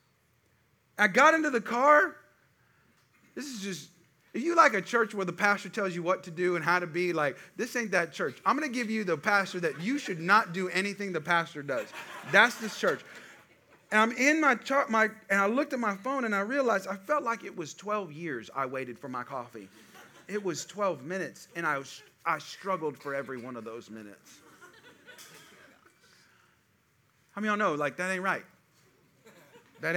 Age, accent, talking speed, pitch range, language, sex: 30-49, American, 200 wpm, 140-205 Hz, English, male